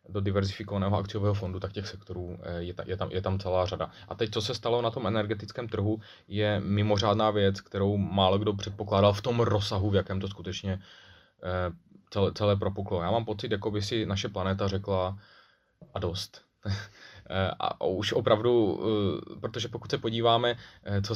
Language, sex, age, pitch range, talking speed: Czech, male, 20-39, 90-105 Hz, 170 wpm